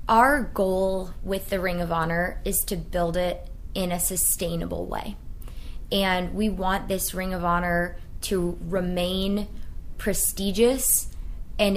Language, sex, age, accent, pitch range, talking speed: English, female, 20-39, American, 175-215 Hz, 135 wpm